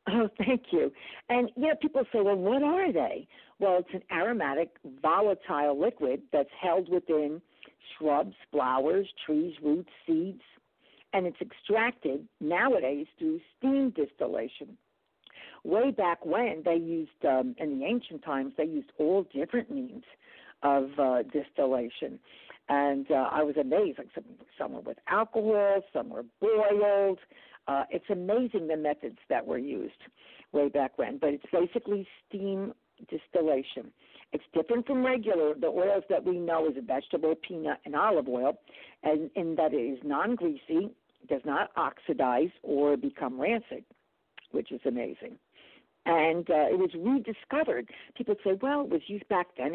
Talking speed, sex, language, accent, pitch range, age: 150 wpm, female, English, American, 150-240 Hz, 60-79